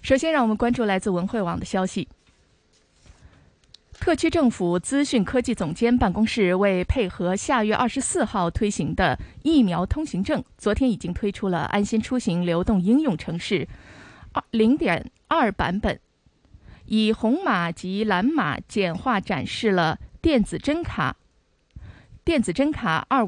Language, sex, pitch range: Chinese, female, 185-255 Hz